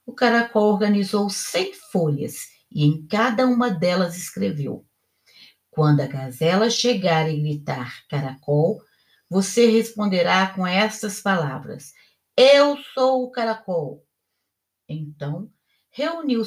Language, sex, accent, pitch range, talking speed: Portuguese, female, Brazilian, 165-235 Hz, 105 wpm